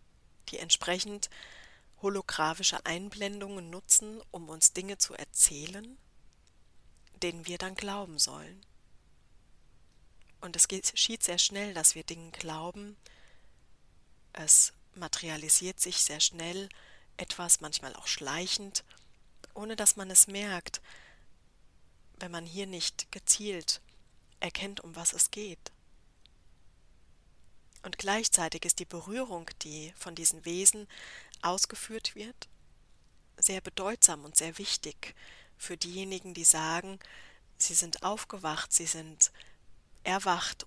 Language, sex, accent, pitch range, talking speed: German, female, German, 150-195 Hz, 110 wpm